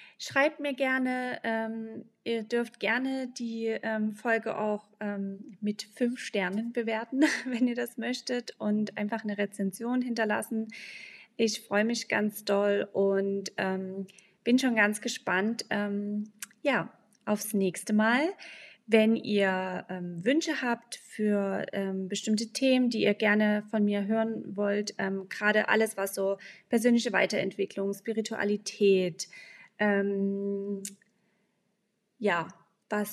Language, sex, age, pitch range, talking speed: German, female, 20-39, 195-225 Hz, 110 wpm